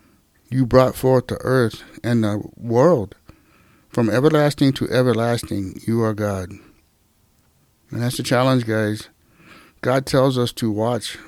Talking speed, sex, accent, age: 135 wpm, male, American, 60-79